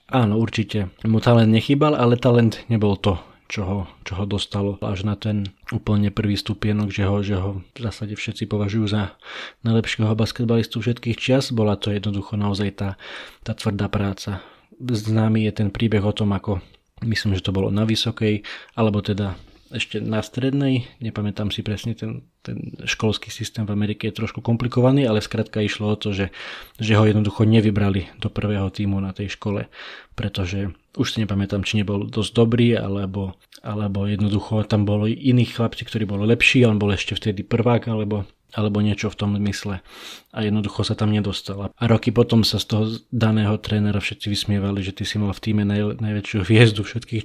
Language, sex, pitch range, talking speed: Slovak, male, 100-115 Hz, 180 wpm